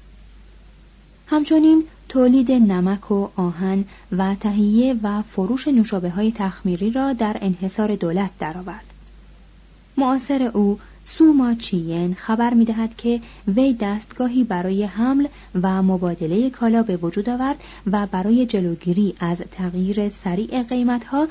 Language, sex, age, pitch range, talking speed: Persian, female, 30-49, 185-245 Hz, 115 wpm